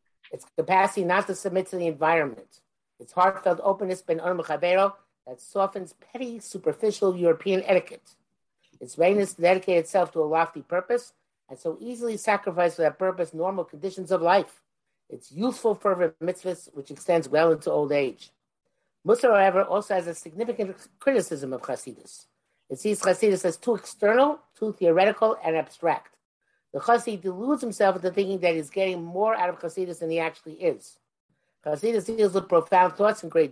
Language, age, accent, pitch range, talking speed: English, 50-69, American, 165-210 Hz, 165 wpm